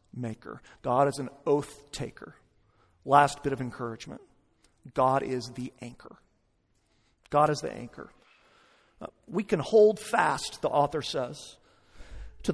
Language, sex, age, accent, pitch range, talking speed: English, male, 40-59, American, 135-205 Hz, 130 wpm